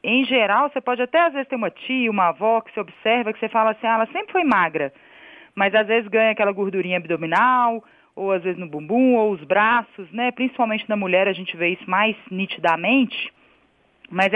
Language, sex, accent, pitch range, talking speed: Portuguese, female, Brazilian, 200-260 Hz, 210 wpm